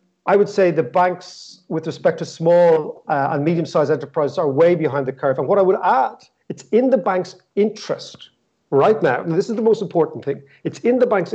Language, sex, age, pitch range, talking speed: English, male, 50-69, 155-195 Hz, 215 wpm